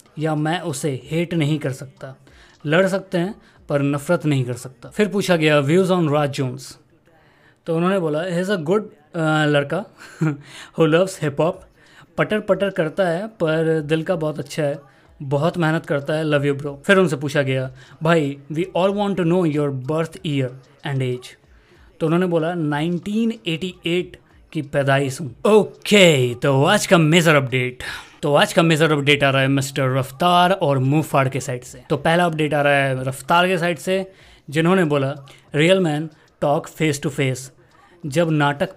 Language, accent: Hindi, native